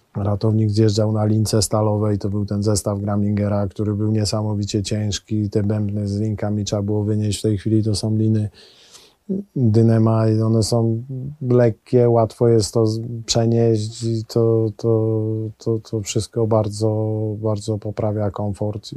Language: Polish